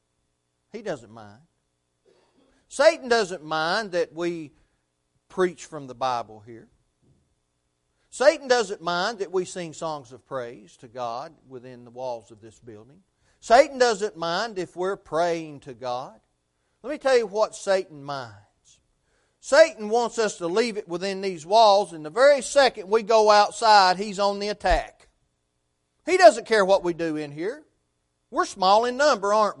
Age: 40-59